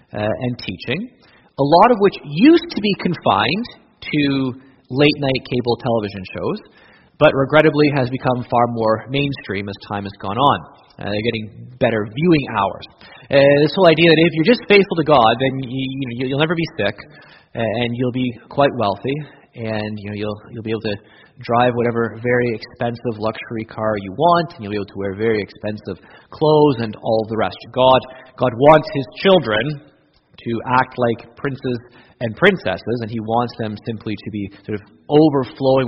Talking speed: 180 wpm